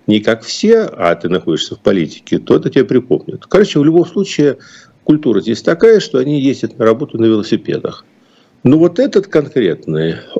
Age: 50-69